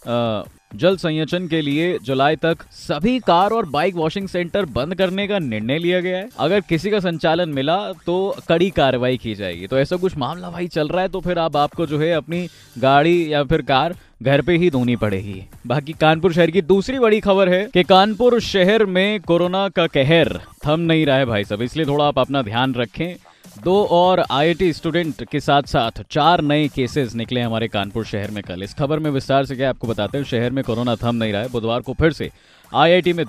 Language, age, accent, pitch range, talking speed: Hindi, 20-39, native, 120-175 Hz, 215 wpm